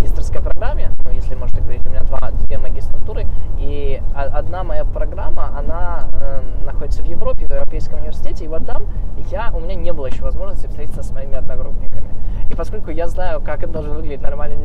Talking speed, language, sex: 180 wpm, Russian, male